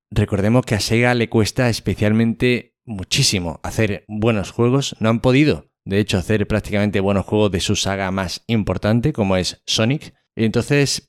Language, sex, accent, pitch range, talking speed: Spanish, male, Spanish, 100-120 Hz, 160 wpm